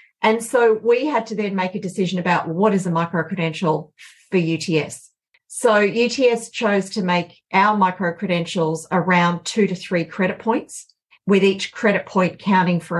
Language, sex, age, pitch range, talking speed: English, female, 40-59, 160-190 Hz, 160 wpm